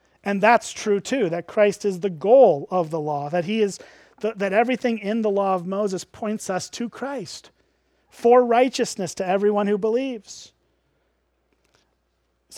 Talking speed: 160 wpm